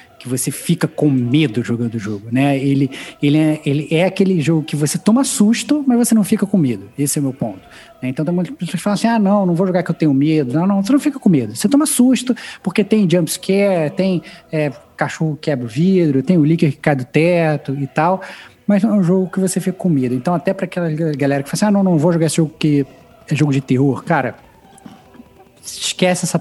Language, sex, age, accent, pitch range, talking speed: Portuguese, male, 20-39, Brazilian, 140-180 Hz, 245 wpm